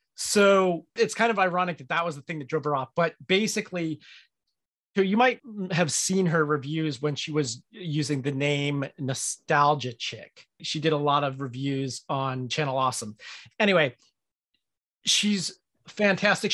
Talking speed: 150 wpm